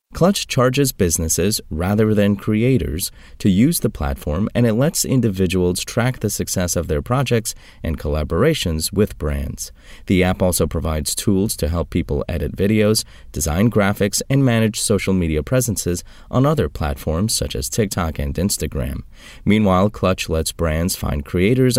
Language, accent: English, American